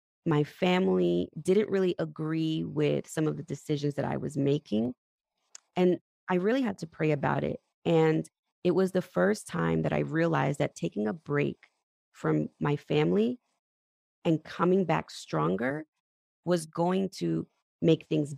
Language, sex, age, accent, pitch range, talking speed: English, female, 20-39, American, 145-185 Hz, 155 wpm